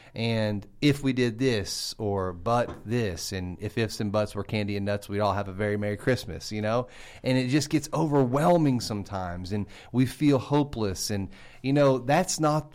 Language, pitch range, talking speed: English, 100-120 Hz, 195 wpm